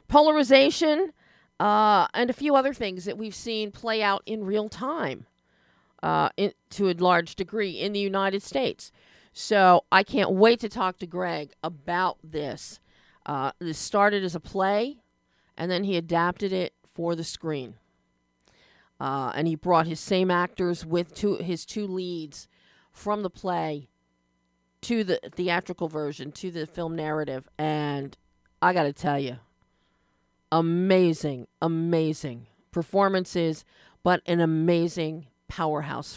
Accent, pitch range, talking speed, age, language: American, 160-230 Hz, 140 wpm, 40-59, English